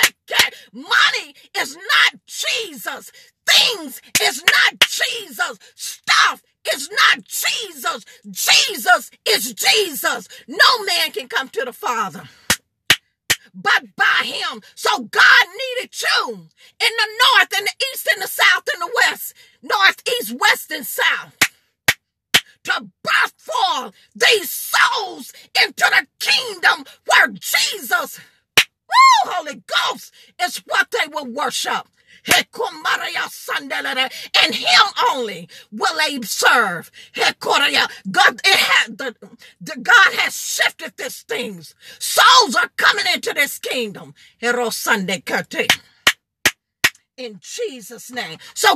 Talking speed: 105 wpm